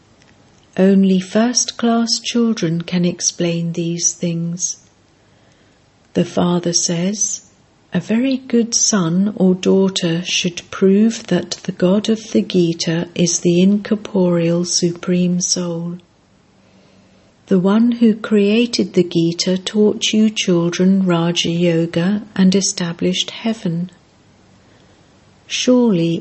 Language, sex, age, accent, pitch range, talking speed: English, female, 60-79, British, 170-205 Hz, 100 wpm